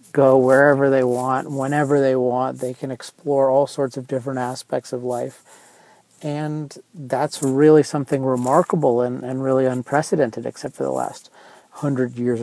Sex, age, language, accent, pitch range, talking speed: male, 40-59, English, American, 125-145 Hz, 155 wpm